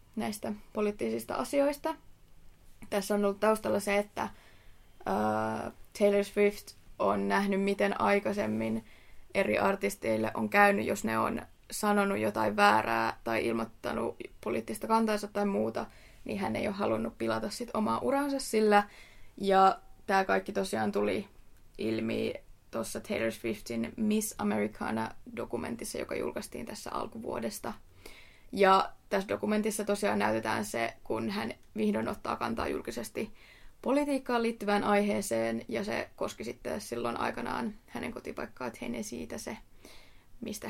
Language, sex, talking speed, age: Finnish, female, 125 wpm, 20-39